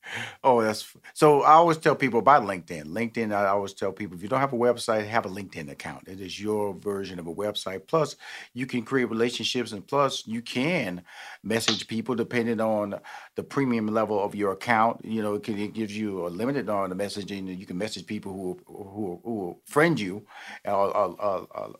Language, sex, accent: English, male, American